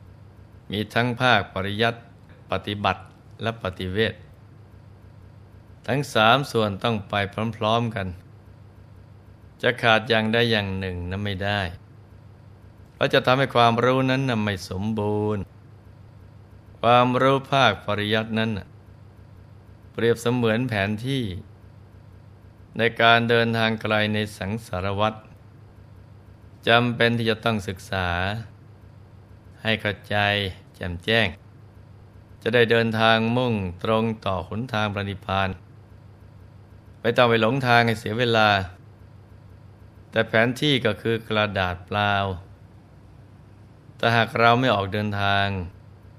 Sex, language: male, Thai